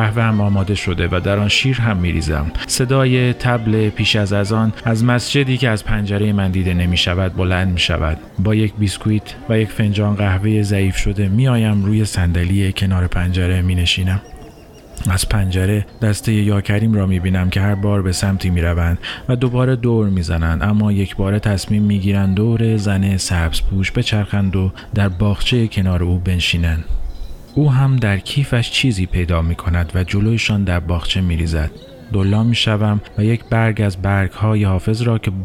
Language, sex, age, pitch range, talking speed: Persian, male, 40-59, 90-110 Hz, 175 wpm